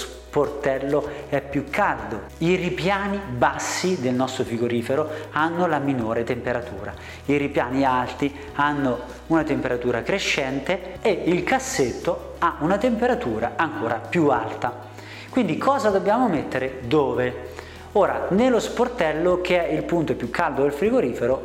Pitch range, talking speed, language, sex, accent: 130-180 Hz, 130 wpm, Italian, male, native